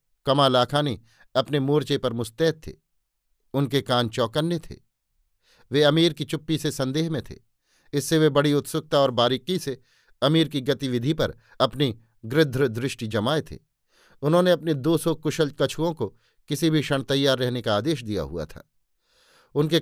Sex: male